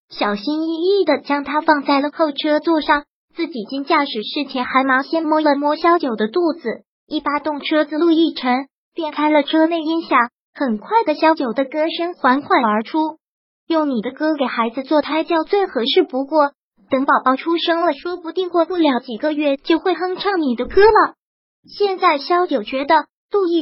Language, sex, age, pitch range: Chinese, male, 20-39, 270-335 Hz